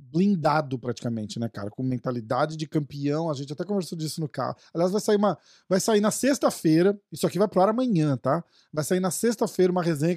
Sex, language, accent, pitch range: male, Portuguese, Brazilian, 145-195 Hz